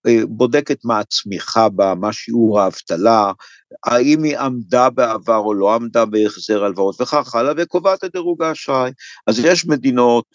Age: 50-69